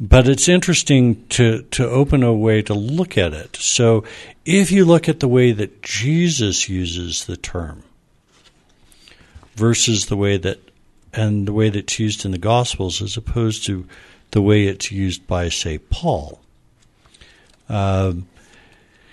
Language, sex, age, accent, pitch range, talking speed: English, male, 60-79, American, 90-120 Hz, 145 wpm